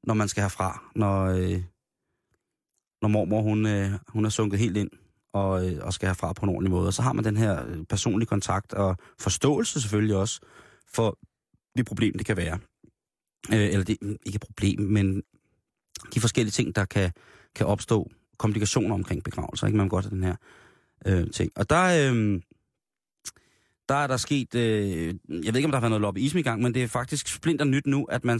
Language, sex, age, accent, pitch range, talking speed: Danish, male, 30-49, native, 100-120 Hz, 210 wpm